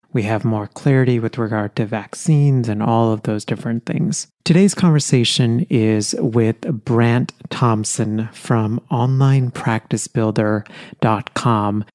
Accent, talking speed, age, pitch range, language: American, 110 wpm, 30-49, 110-145 Hz, English